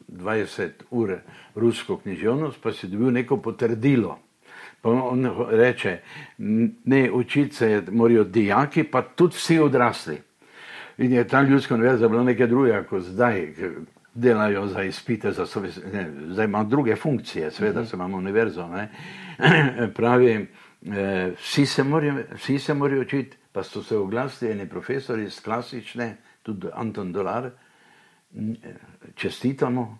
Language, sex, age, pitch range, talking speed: English, male, 60-79, 110-130 Hz, 125 wpm